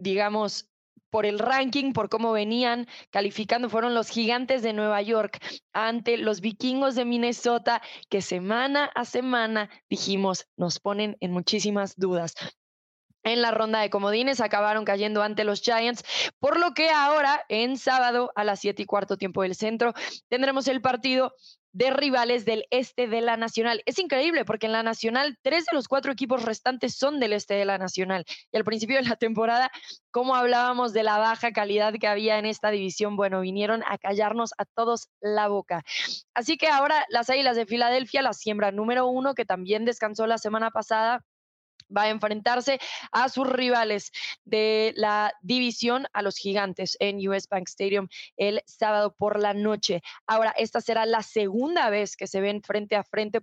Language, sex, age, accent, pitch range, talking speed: Spanish, female, 20-39, Mexican, 205-245 Hz, 175 wpm